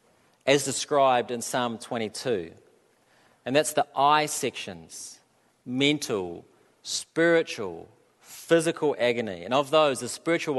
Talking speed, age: 110 wpm, 40-59